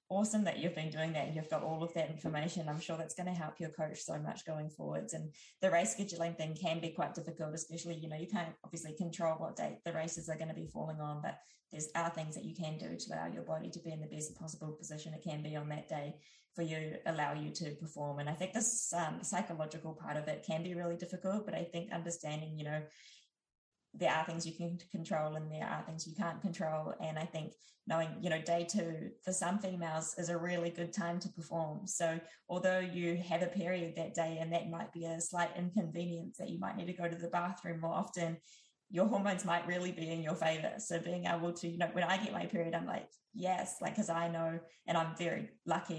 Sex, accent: female, Australian